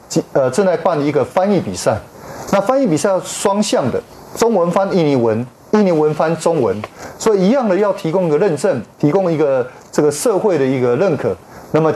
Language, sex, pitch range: Chinese, male, 130-185 Hz